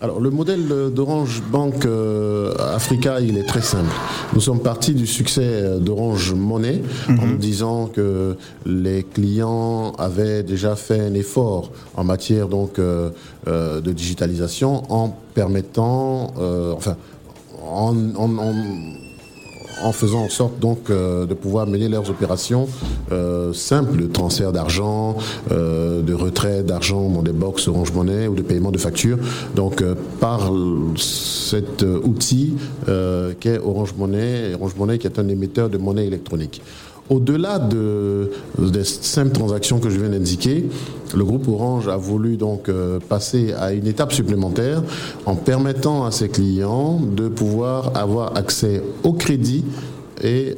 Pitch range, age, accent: 95-125 Hz, 50-69, French